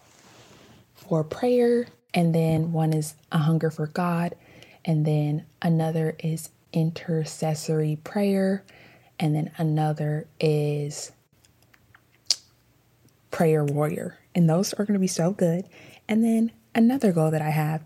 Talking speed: 125 wpm